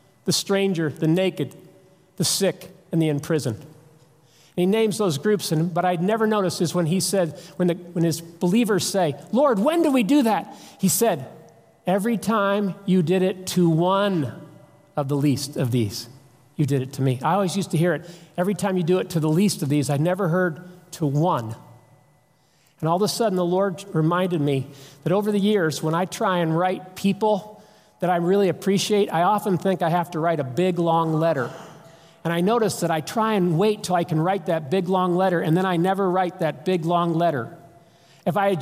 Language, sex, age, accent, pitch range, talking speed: English, male, 50-69, American, 160-195 Hz, 215 wpm